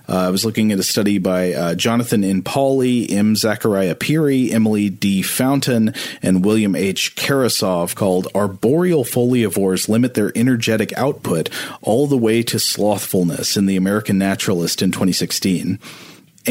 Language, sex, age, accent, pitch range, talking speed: English, male, 40-59, American, 95-115 Hz, 145 wpm